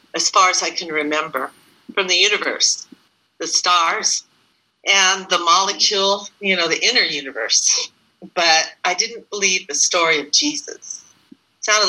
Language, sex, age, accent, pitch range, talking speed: English, female, 50-69, American, 155-200 Hz, 140 wpm